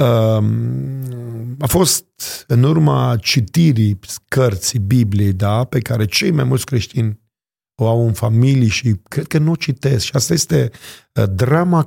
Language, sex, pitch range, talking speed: Romanian, male, 110-140 Hz, 140 wpm